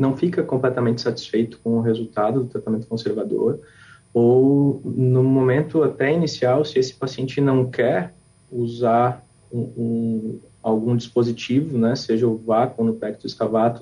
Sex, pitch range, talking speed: male, 115-130 Hz, 140 wpm